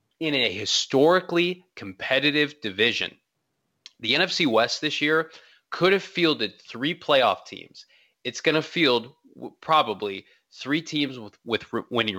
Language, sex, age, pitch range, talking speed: English, male, 20-39, 115-155 Hz, 130 wpm